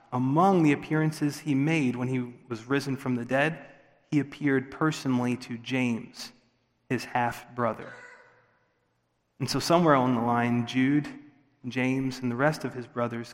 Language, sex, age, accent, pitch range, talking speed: English, male, 30-49, American, 125-160 Hz, 150 wpm